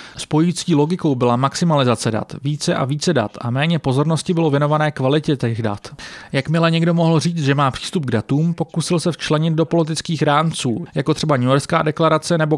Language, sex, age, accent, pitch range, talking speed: English, male, 30-49, Czech, 135-165 Hz, 185 wpm